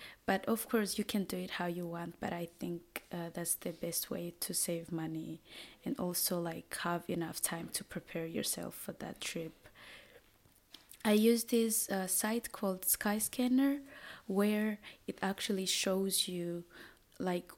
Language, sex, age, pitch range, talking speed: Finnish, female, 20-39, 170-205 Hz, 155 wpm